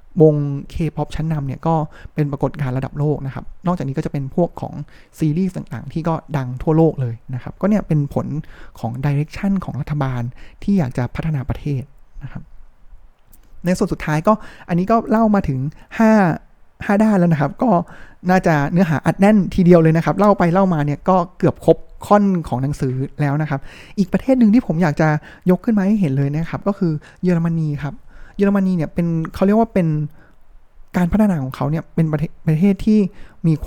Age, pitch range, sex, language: 20-39, 140-185 Hz, male, Thai